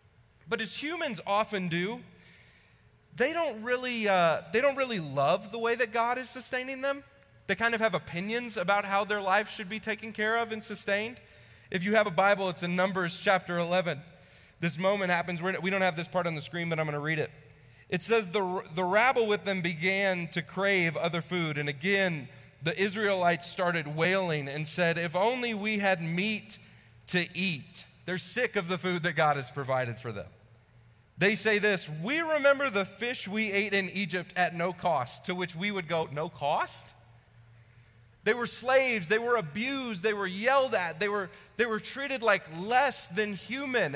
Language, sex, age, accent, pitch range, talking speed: English, male, 30-49, American, 170-220 Hz, 195 wpm